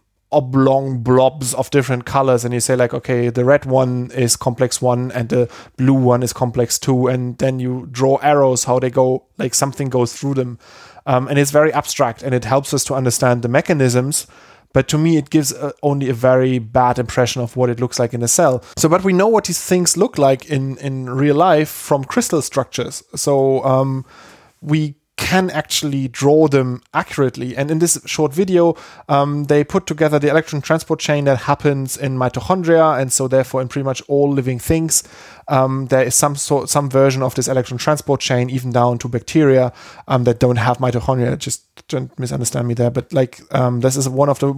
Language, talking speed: English, 205 wpm